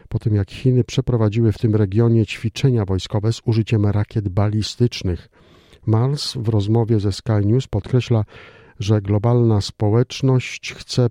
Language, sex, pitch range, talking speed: Polish, male, 100-120 Hz, 135 wpm